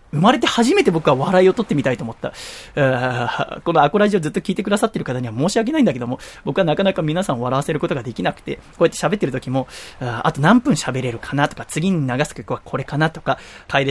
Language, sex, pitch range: Japanese, male, 130-185 Hz